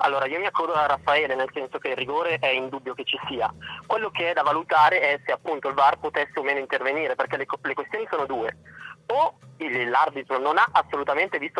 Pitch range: 125-150 Hz